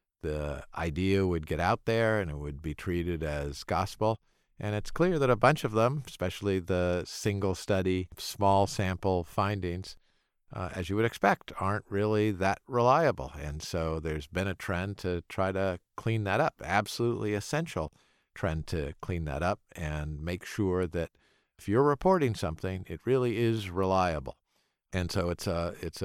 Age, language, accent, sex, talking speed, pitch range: 50-69, English, American, male, 165 wpm, 85-110 Hz